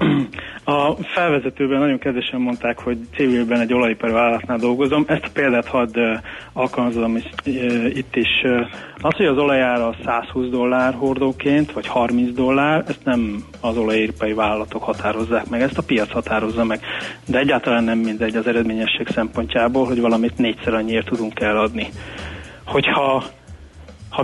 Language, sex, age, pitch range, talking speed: Hungarian, male, 30-49, 115-130 Hz, 135 wpm